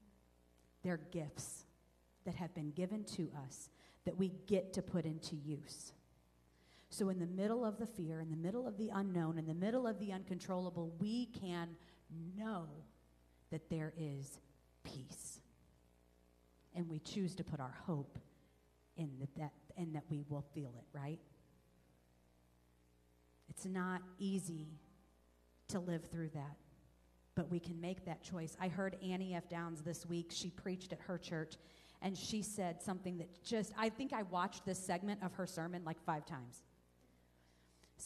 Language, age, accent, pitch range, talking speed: English, 40-59, American, 145-195 Hz, 160 wpm